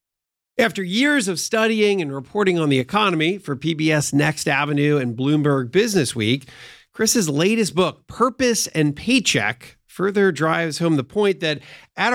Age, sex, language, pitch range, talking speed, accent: 40-59, male, English, 145-200 Hz, 150 wpm, American